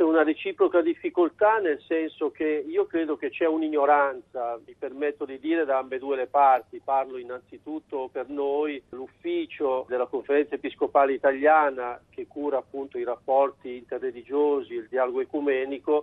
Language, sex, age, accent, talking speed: Italian, male, 50-69, native, 140 wpm